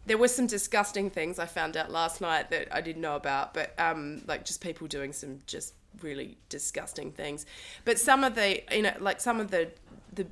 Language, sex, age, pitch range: English, female, 20-39, 155-190 Hz